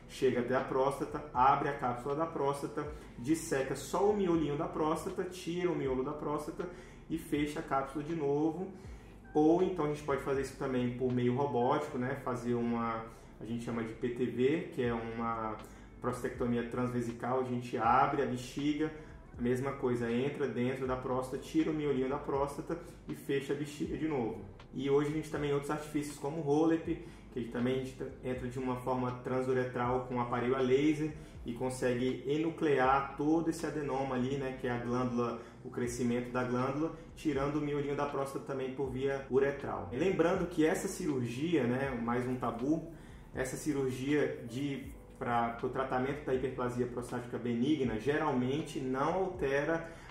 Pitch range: 125-150 Hz